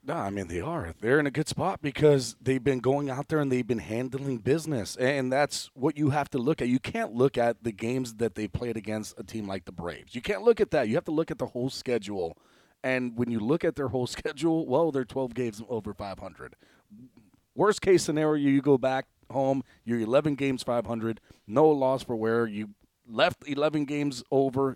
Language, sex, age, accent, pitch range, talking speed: English, male, 30-49, American, 115-140 Hz, 225 wpm